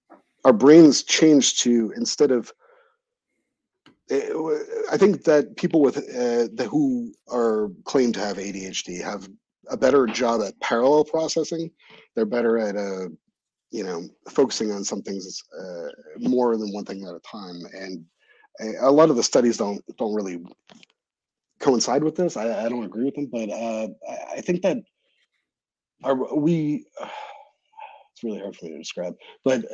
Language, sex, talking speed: English, male, 160 wpm